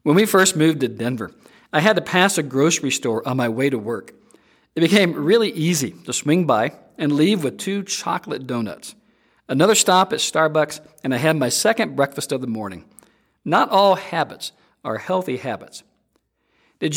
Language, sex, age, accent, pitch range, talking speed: English, male, 50-69, American, 140-190 Hz, 180 wpm